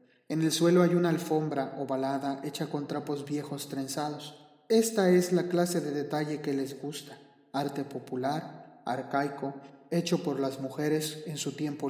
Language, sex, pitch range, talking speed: Spanish, male, 140-175 Hz, 155 wpm